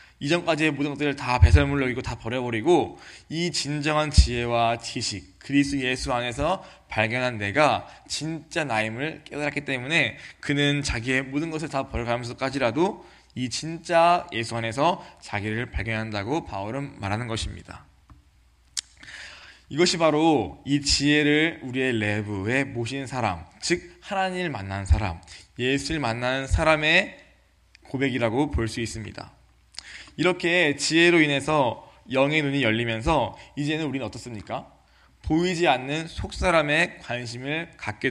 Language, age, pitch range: Korean, 20-39, 110-150 Hz